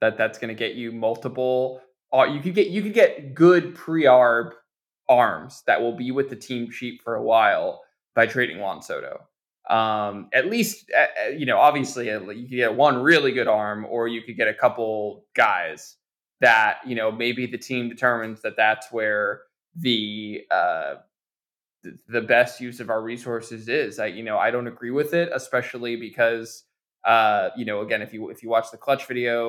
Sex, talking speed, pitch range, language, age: male, 190 wpm, 115-140 Hz, English, 20-39